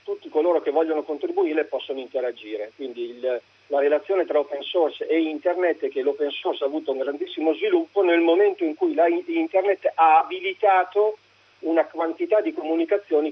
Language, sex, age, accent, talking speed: Italian, male, 40-59, native, 160 wpm